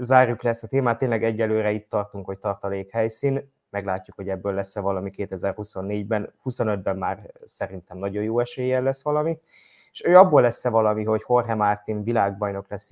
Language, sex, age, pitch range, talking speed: Hungarian, male, 20-39, 100-125 Hz, 165 wpm